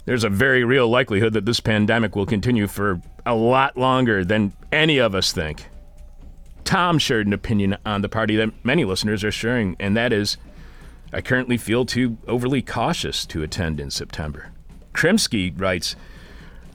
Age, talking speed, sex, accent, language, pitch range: 40-59, 165 wpm, male, American, English, 95-130 Hz